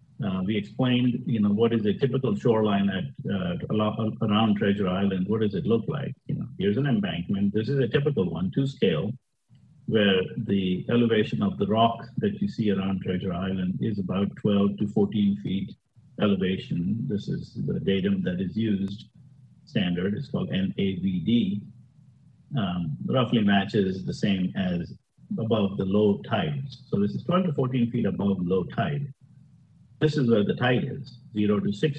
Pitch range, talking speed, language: 100-140 Hz, 170 wpm, English